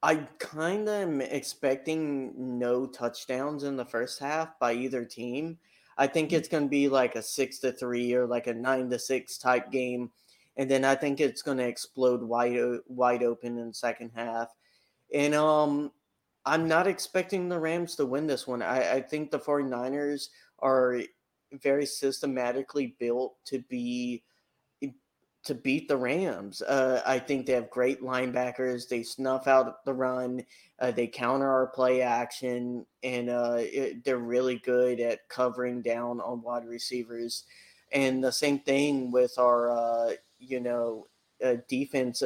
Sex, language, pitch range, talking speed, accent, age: male, English, 120-140 Hz, 160 wpm, American, 30-49